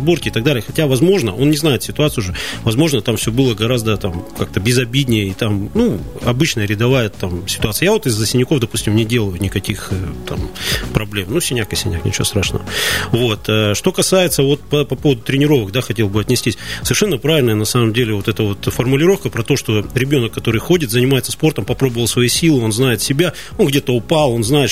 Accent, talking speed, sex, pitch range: native, 205 wpm, male, 110-150 Hz